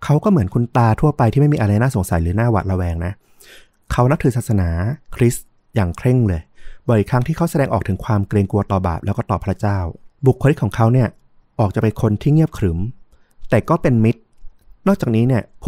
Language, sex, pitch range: Thai, male, 100-125 Hz